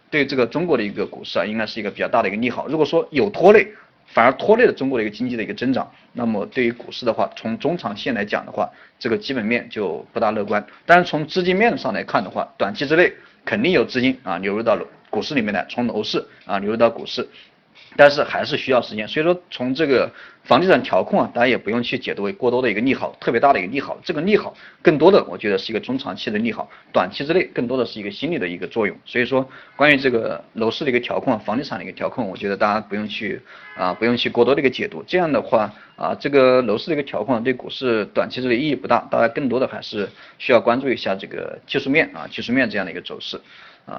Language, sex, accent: Chinese, male, native